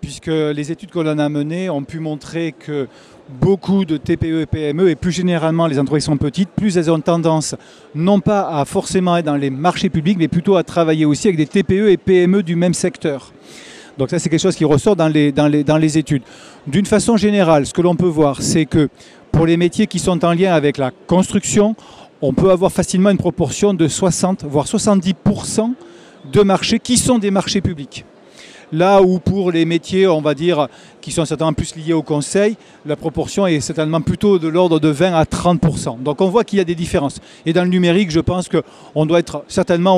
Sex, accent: male, French